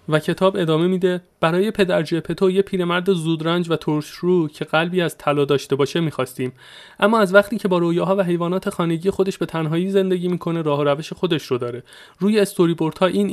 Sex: male